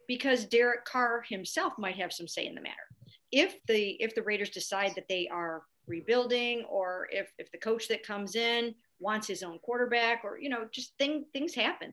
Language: English